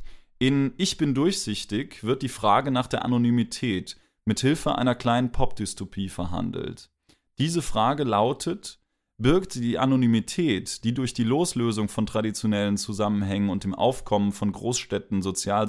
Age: 30-49